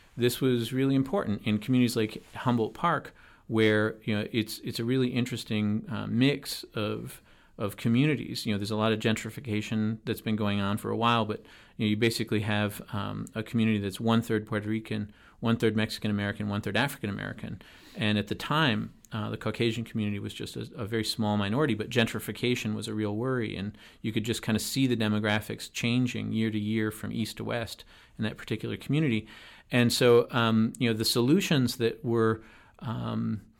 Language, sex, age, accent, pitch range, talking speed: English, male, 40-59, American, 110-120 Hz, 205 wpm